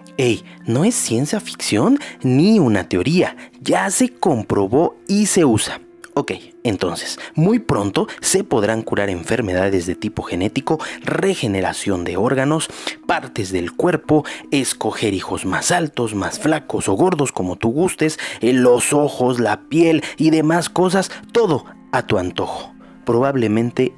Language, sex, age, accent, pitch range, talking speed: Spanish, male, 30-49, Mexican, 105-160 Hz, 135 wpm